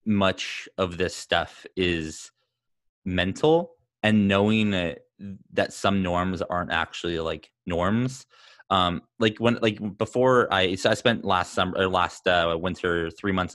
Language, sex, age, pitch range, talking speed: English, male, 20-39, 90-120 Hz, 140 wpm